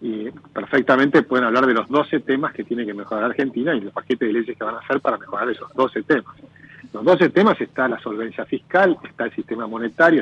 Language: Italian